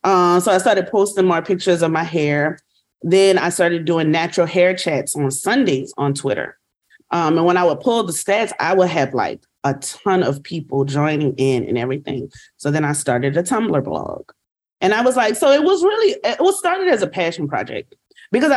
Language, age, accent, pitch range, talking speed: English, 30-49, American, 150-185 Hz, 205 wpm